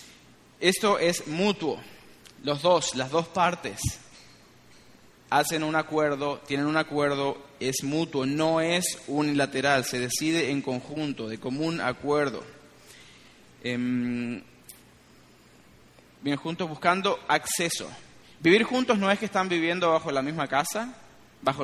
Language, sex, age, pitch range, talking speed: Spanish, male, 20-39, 140-170 Hz, 115 wpm